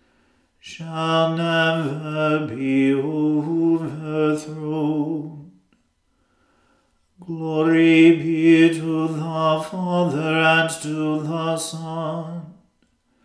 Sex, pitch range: male, 150-160 Hz